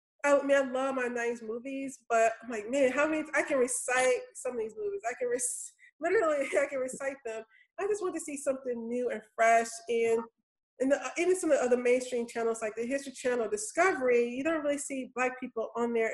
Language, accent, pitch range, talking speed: English, American, 230-290 Hz, 225 wpm